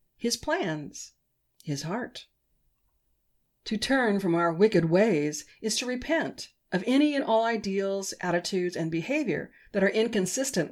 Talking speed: 135 wpm